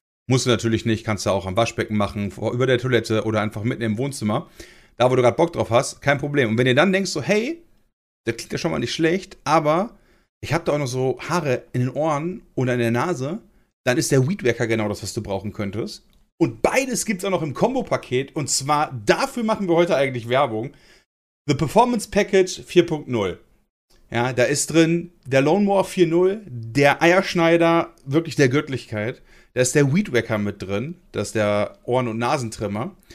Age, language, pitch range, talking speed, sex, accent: 40-59, German, 115-160 Hz, 205 wpm, male, German